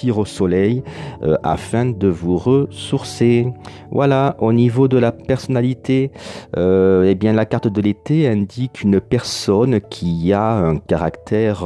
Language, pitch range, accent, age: French, 95-120 Hz, French, 40-59